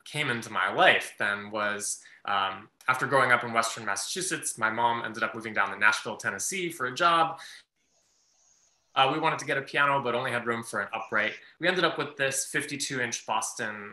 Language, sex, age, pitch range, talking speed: English, male, 20-39, 110-140 Hz, 205 wpm